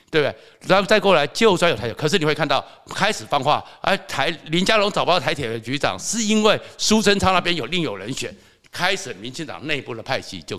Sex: male